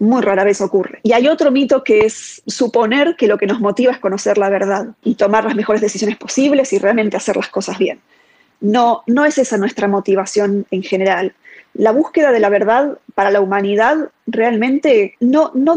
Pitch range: 210-285 Hz